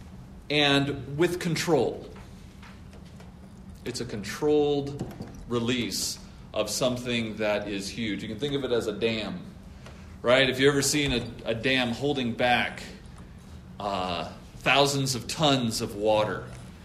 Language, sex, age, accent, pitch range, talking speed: English, male, 40-59, American, 95-130 Hz, 130 wpm